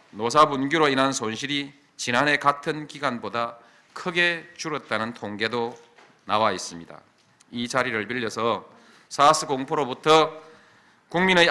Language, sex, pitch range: Korean, male, 120-165 Hz